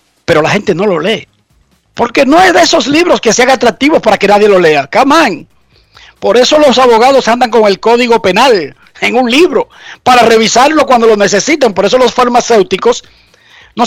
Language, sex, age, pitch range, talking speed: Spanish, male, 50-69, 170-255 Hz, 185 wpm